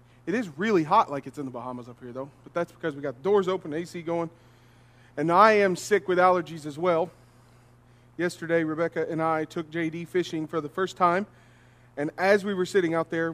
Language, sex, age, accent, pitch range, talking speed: English, male, 40-59, American, 140-205 Hz, 215 wpm